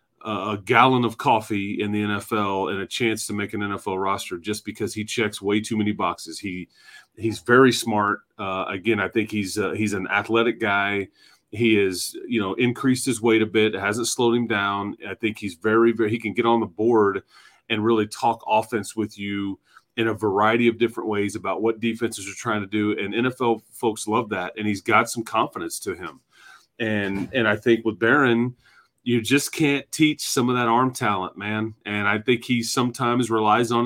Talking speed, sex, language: 205 wpm, male, English